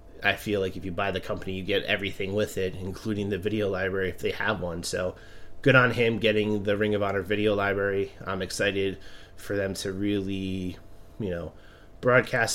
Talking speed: 195 wpm